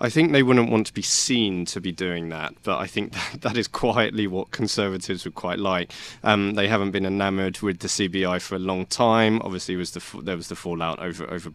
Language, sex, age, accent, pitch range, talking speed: English, male, 20-39, British, 85-100 Hz, 240 wpm